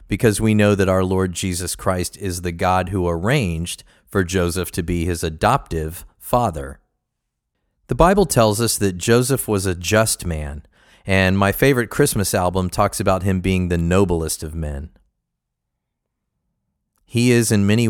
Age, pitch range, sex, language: 40-59, 90-115 Hz, male, English